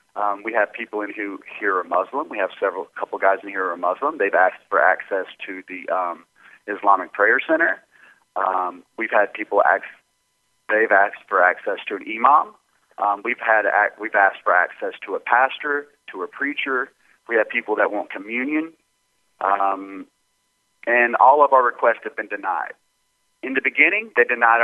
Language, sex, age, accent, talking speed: English, male, 30-49, American, 180 wpm